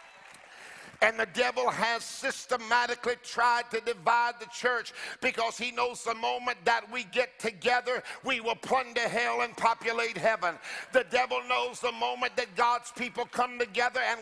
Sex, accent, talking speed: male, American, 155 wpm